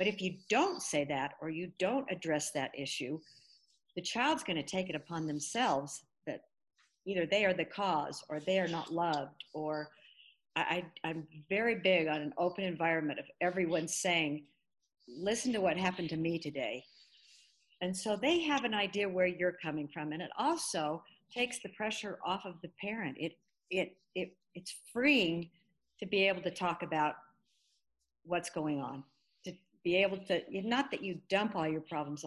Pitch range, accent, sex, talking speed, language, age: 160-215 Hz, American, female, 175 wpm, English, 50-69